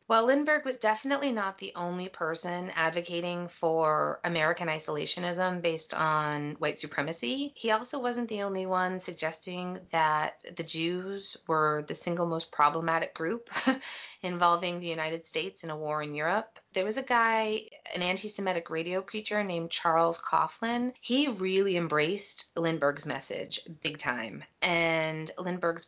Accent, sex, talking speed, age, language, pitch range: American, female, 140 wpm, 30-49, English, 160-200 Hz